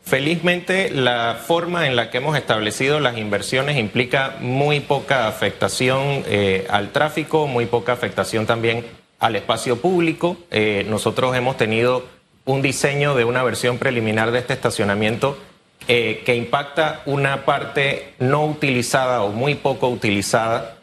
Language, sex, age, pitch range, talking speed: Spanish, male, 30-49, 110-140 Hz, 140 wpm